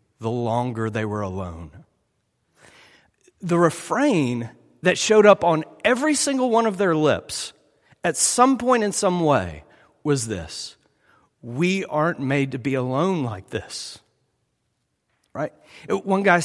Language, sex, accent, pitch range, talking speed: English, male, American, 115-185 Hz, 130 wpm